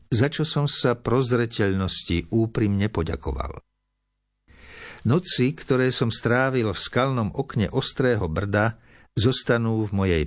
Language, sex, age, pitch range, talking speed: Slovak, male, 50-69, 95-125 Hz, 110 wpm